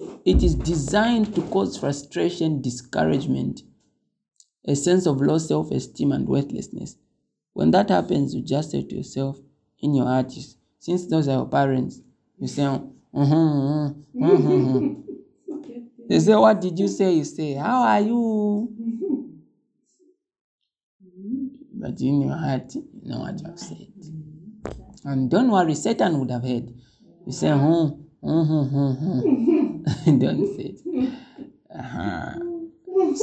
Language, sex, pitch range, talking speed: English, male, 130-190 Hz, 130 wpm